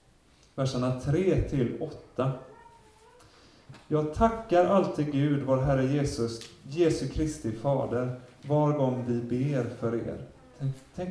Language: Swedish